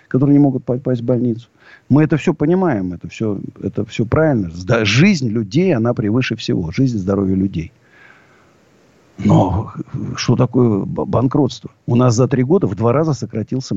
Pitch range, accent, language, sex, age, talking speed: 110-155 Hz, native, Russian, male, 50-69, 155 wpm